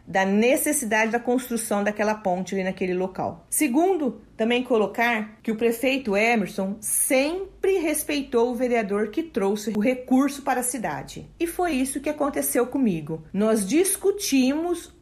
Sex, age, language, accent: female, 40-59, Portuguese, Brazilian